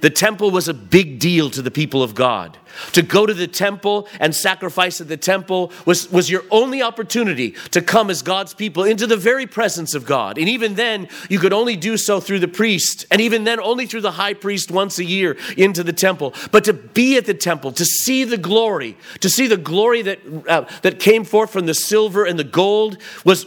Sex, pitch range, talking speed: male, 165-215 Hz, 225 wpm